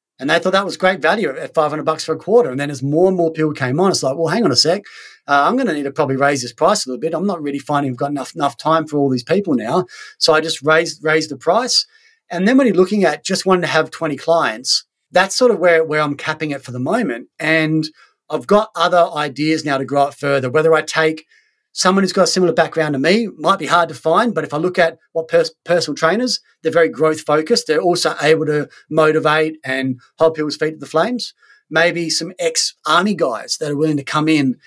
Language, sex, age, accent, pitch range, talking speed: English, male, 30-49, Australian, 145-175 Hz, 250 wpm